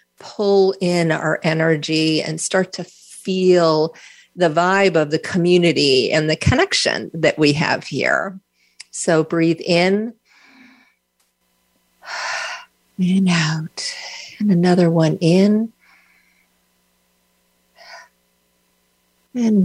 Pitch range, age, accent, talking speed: 145-195 Hz, 50-69, American, 90 wpm